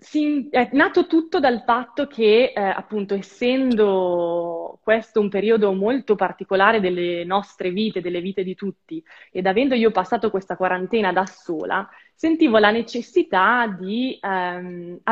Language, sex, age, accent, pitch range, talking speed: Italian, female, 20-39, native, 190-250 Hz, 135 wpm